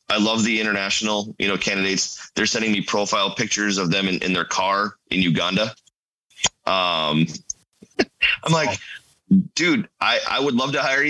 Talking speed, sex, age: 160 wpm, male, 30-49